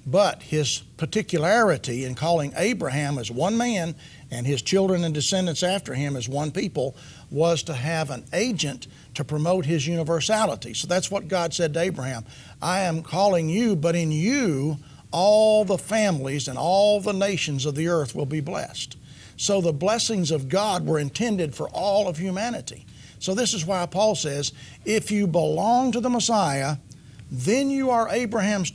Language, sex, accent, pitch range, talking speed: English, male, American, 145-195 Hz, 170 wpm